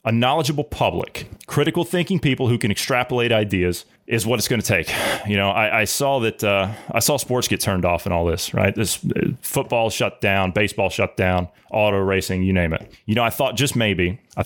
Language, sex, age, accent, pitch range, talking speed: English, male, 30-49, American, 100-130 Hz, 220 wpm